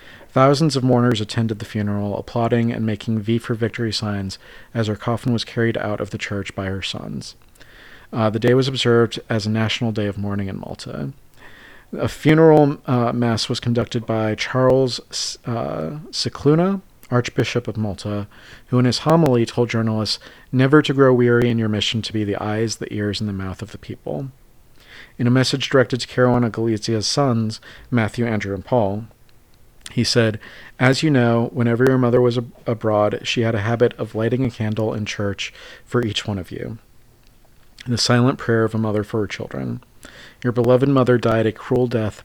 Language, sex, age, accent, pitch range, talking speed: English, male, 40-59, American, 105-125 Hz, 185 wpm